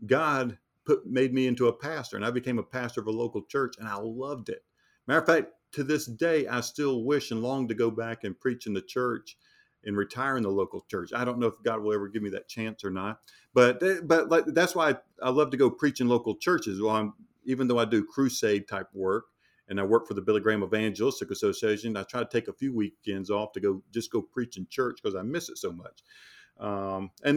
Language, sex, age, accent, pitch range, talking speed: English, male, 50-69, American, 105-130 Hz, 250 wpm